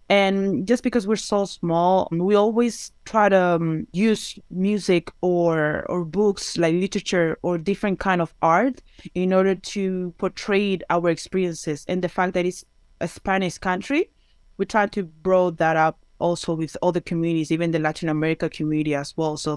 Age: 20-39